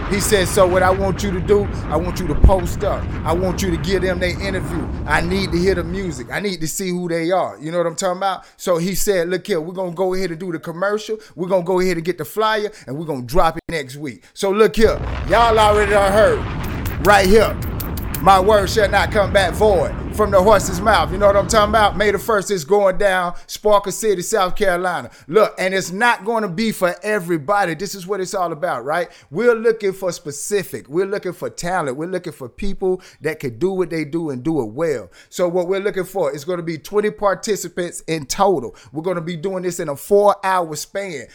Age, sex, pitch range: 30-49, male, 175-205 Hz